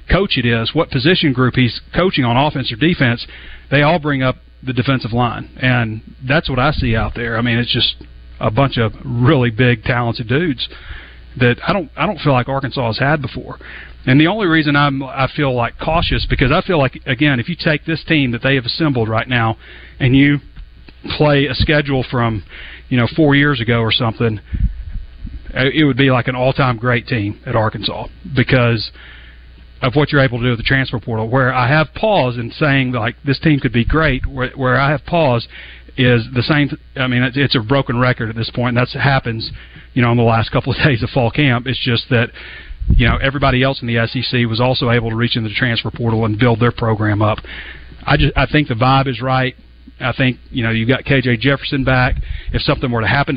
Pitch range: 115-140 Hz